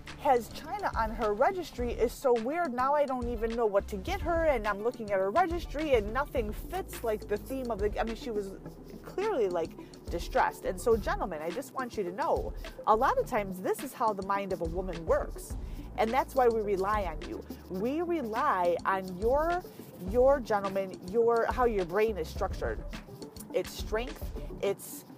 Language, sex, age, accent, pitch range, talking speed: English, female, 30-49, American, 190-255 Hz, 195 wpm